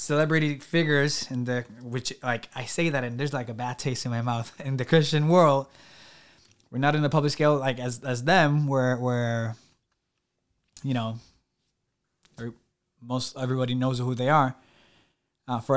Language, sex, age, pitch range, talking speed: English, male, 20-39, 115-140 Hz, 165 wpm